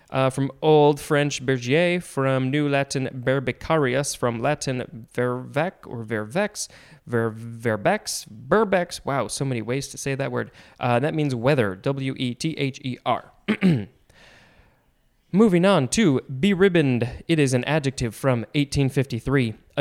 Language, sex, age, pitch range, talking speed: English, male, 20-39, 120-150 Hz, 120 wpm